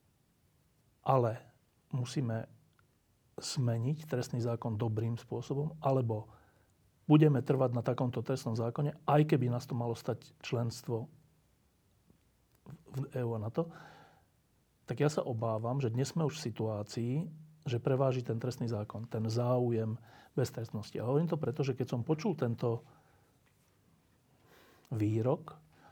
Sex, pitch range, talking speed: male, 115-150 Hz, 125 wpm